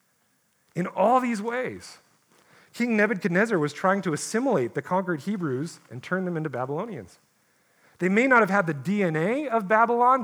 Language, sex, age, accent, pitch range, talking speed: English, male, 40-59, American, 155-205 Hz, 160 wpm